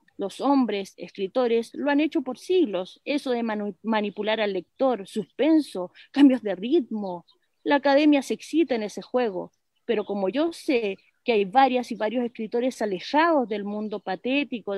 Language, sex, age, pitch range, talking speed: Spanish, female, 30-49, 220-295 Hz, 160 wpm